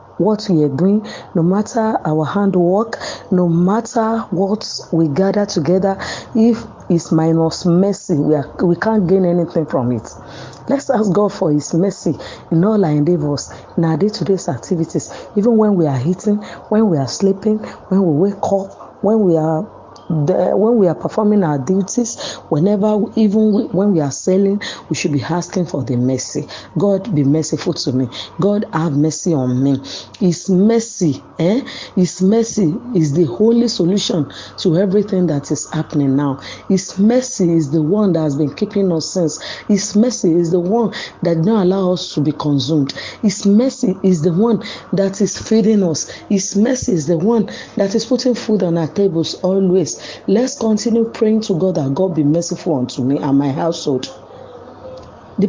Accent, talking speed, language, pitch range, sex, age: Nigerian, 175 wpm, English, 160-210 Hz, female, 40-59